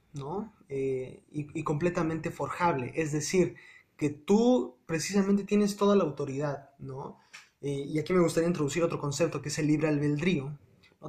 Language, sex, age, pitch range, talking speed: Spanish, male, 20-39, 145-190 Hz, 160 wpm